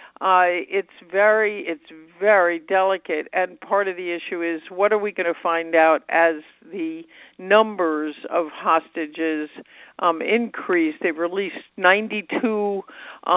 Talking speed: 130 wpm